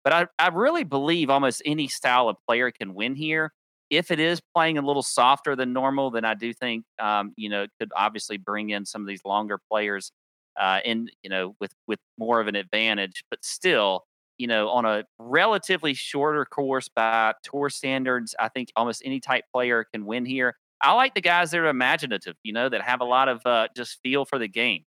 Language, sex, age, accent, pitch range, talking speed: English, male, 30-49, American, 110-140 Hz, 215 wpm